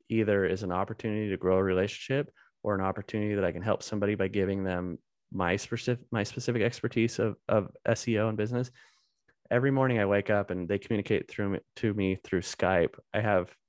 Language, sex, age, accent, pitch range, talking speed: English, male, 20-39, American, 95-110 Hz, 195 wpm